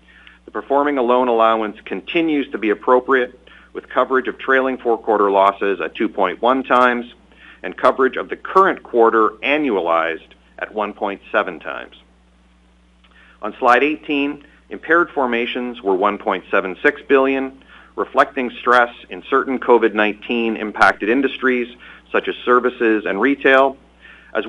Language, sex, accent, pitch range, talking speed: English, male, American, 100-135 Hz, 120 wpm